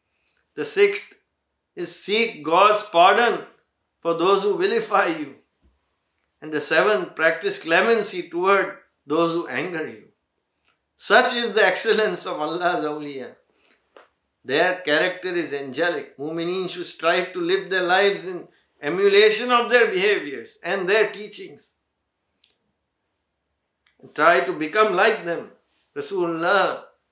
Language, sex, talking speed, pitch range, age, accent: English, male, 120 wpm, 170-215 Hz, 50-69, Indian